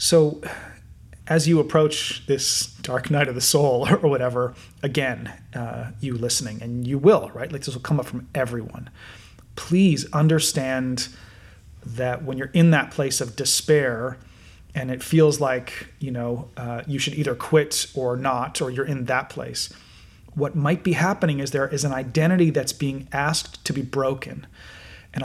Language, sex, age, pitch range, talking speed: English, male, 30-49, 125-155 Hz, 165 wpm